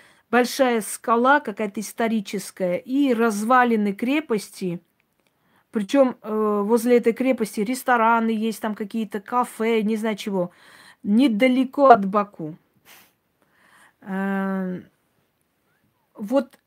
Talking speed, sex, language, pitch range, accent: 85 wpm, female, Russian, 200-255 Hz, native